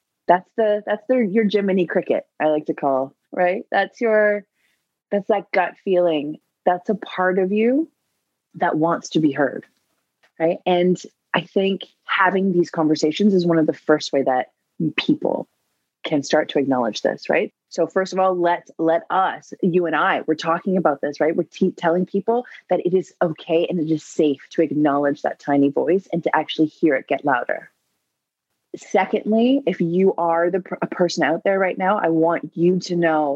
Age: 20-39